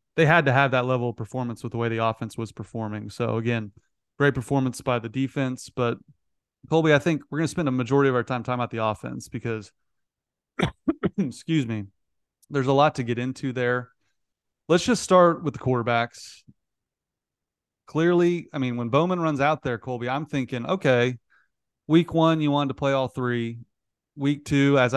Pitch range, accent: 115-150 Hz, American